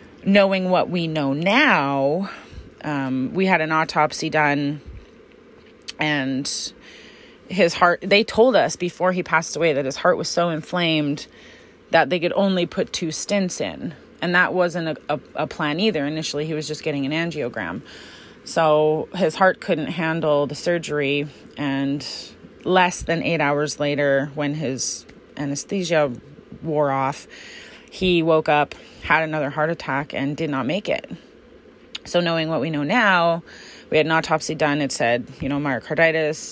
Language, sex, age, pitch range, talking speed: English, female, 30-49, 140-165 Hz, 155 wpm